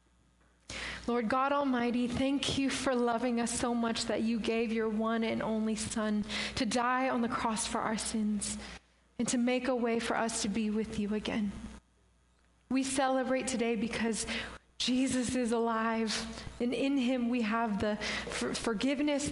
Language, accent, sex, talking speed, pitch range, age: English, American, female, 160 wpm, 220-250 Hz, 20-39